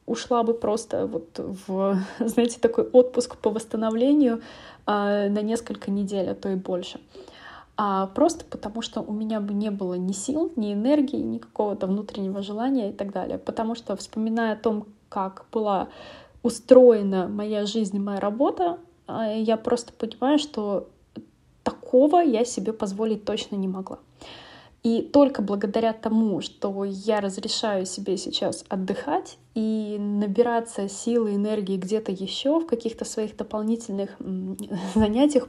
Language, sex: Russian, female